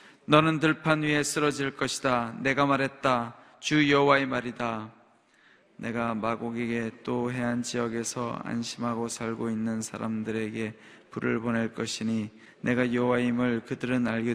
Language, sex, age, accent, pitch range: Korean, male, 20-39, native, 115-140 Hz